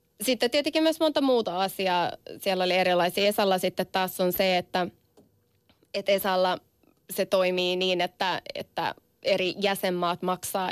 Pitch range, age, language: 180-205 Hz, 20-39, Finnish